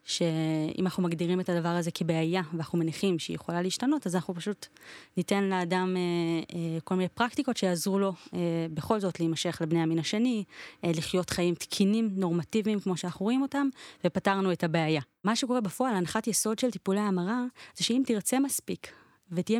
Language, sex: Hebrew, female